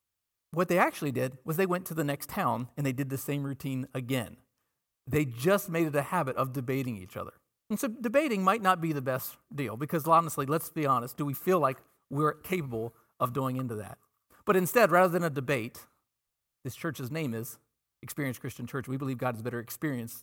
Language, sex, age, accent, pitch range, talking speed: English, male, 40-59, American, 130-180 Hz, 210 wpm